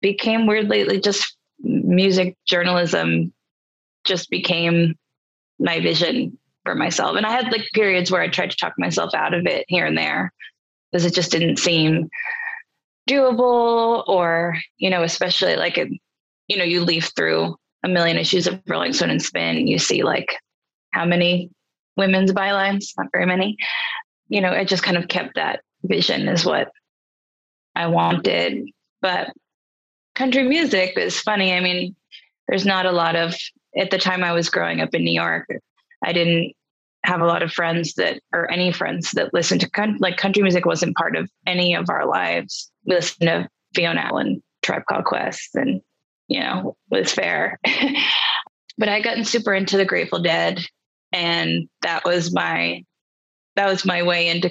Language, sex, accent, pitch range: English, female, American, 170-200 Hz